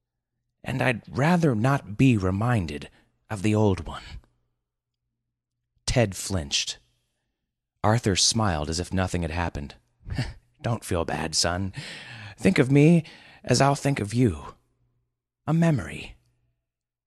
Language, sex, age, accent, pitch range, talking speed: English, male, 30-49, American, 85-120 Hz, 115 wpm